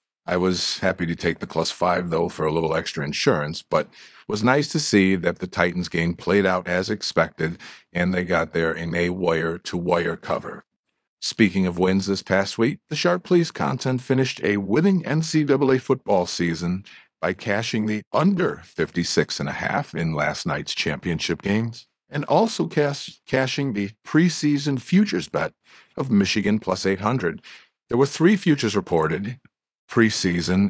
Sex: male